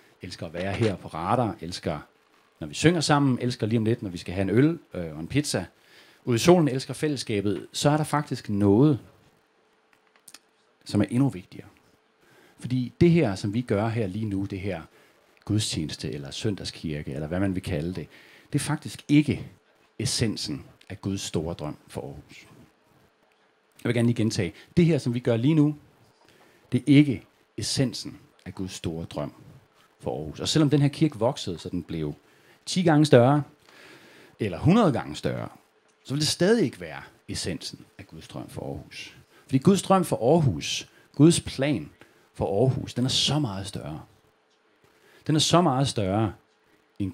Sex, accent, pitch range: male, native, 100-150 Hz